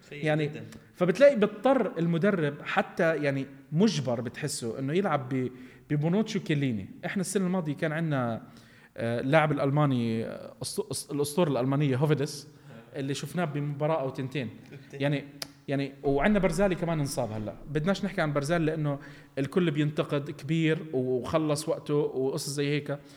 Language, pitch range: Arabic, 125-165 Hz